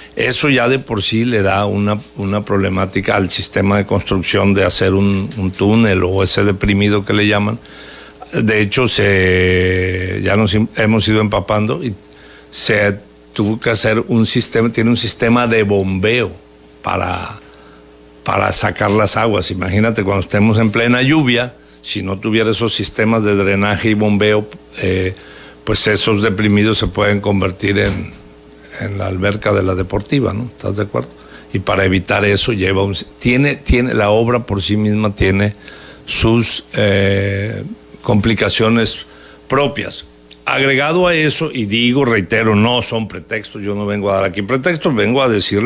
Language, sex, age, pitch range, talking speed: Spanish, male, 60-79, 95-115 Hz, 155 wpm